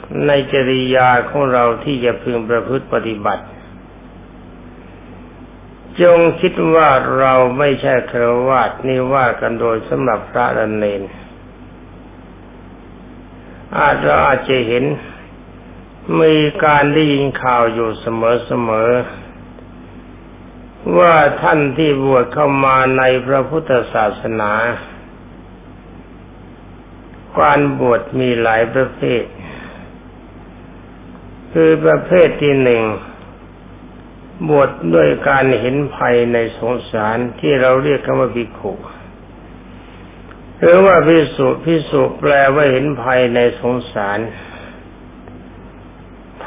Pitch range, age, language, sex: 85-135 Hz, 60-79, Thai, male